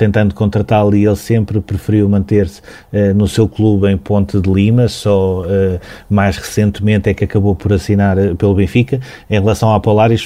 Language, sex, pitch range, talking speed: Portuguese, male, 100-110 Hz, 180 wpm